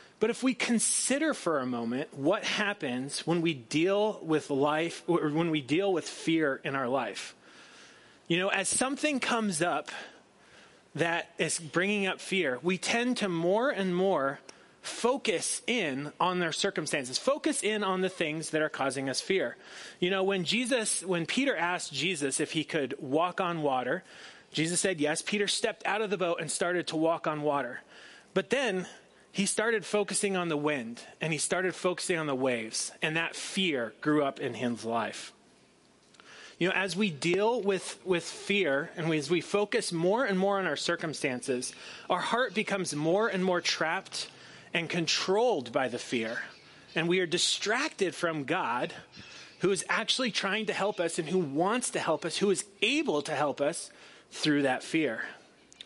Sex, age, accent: male, 30-49, American